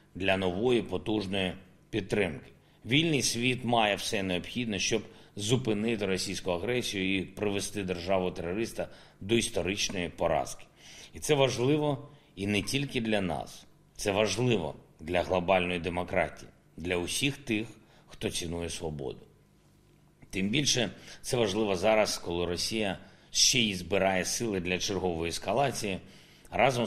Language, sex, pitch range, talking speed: Ukrainian, male, 90-115 Hz, 120 wpm